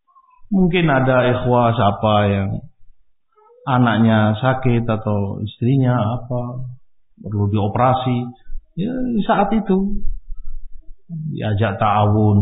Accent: native